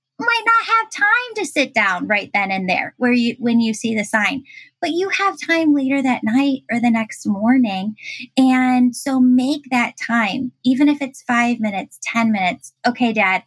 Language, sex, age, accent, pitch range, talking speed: English, female, 10-29, American, 215-265 Hz, 190 wpm